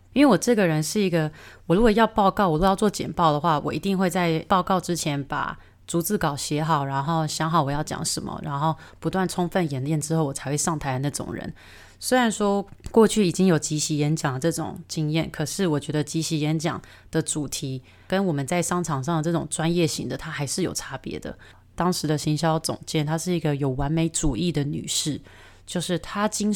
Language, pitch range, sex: Chinese, 155-190 Hz, female